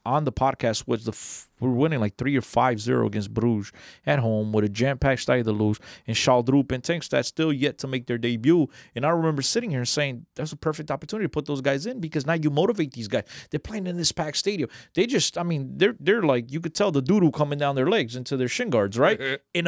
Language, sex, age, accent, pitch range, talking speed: English, male, 30-49, American, 135-200 Hz, 260 wpm